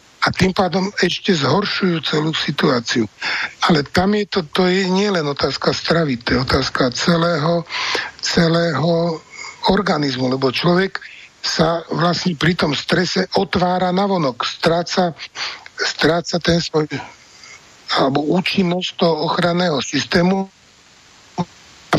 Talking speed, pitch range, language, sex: 110 wpm, 160-185 Hz, Slovak, male